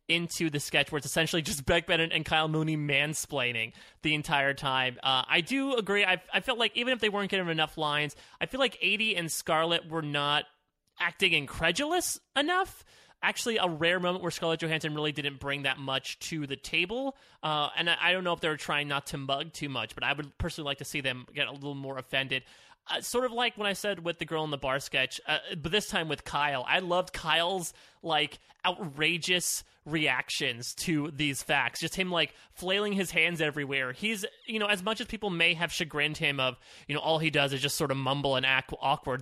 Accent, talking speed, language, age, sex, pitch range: American, 225 wpm, English, 30-49, male, 145-180 Hz